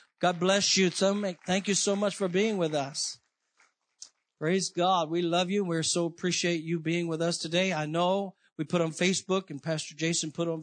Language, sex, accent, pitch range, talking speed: English, male, American, 145-175 Hz, 200 wpm